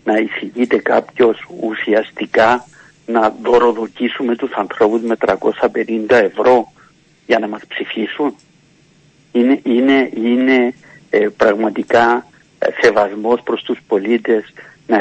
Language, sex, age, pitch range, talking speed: Greek, male, 50-69, 115-180 Hz, 100 wpm